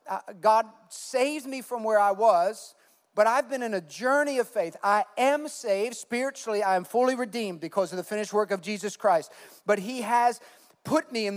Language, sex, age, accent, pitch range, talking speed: English, male, 40-59, American, 195-250 Hz, 205 wpm